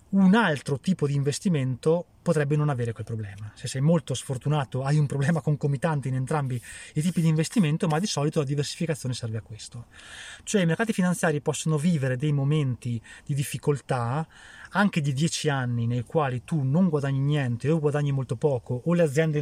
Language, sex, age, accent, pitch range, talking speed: Italian, male, 20-39, native, 125-170 Hz, 180 wpm